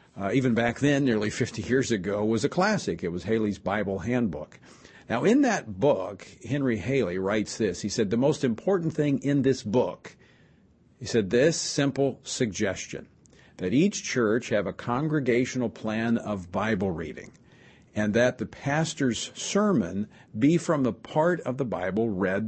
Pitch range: 105-140 Hz